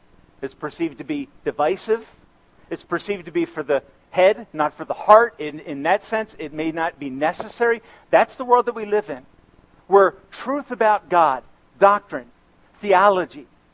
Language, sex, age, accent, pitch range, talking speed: English, male, 50-69, American, 190-245 Hz, 165 wpm